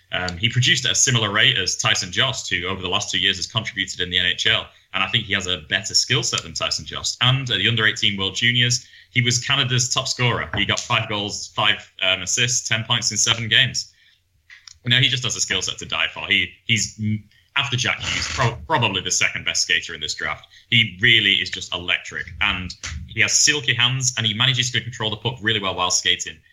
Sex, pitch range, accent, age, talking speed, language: male, 95-120 Hz, British, 10-29, 235 wpm, English